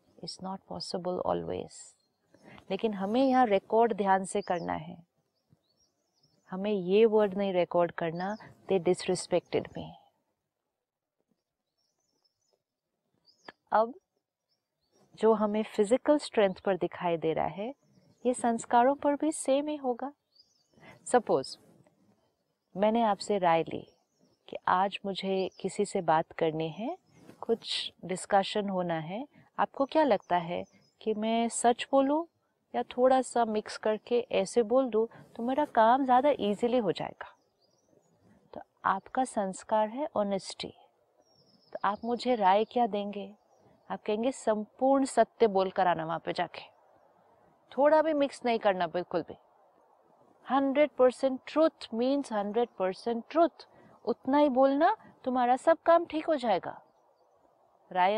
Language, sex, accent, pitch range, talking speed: Hindi, female, native, 195-260 Hz, 120 wpm